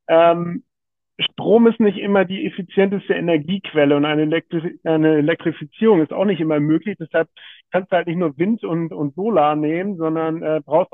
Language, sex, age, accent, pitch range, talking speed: German, male, 40-59, German, 150-185 Hz, 165 wpm